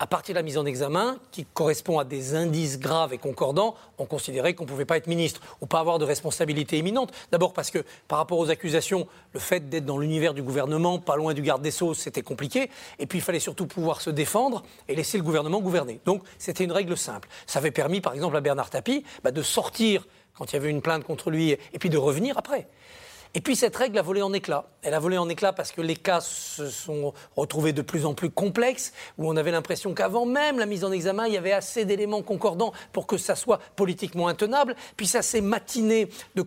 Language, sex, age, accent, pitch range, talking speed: French, male, 40-59, French, 155-205 Hz, 240 wpm